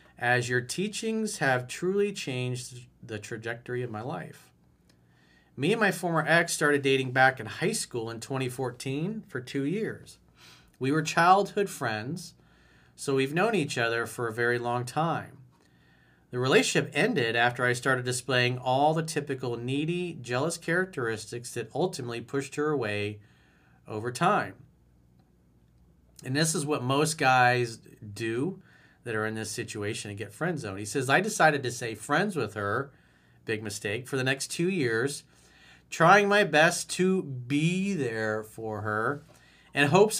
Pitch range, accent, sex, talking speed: 110-150 Hz, American, male, 155 wpm